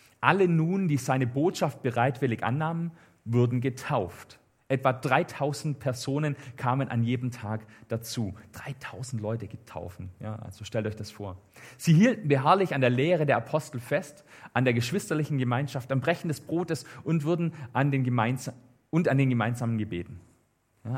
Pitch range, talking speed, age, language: 115-150 Hz, 150 wpm, 40-59, German